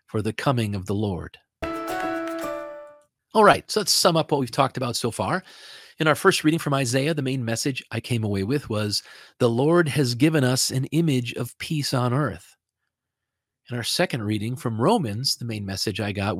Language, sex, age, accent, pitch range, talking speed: English, male, 40-59, American, 115-155 Hz, 200 wpm